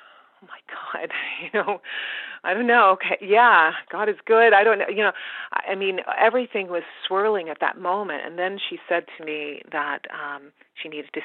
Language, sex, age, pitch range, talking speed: English, female, 40-59, 150-200 Hz, 195 wpm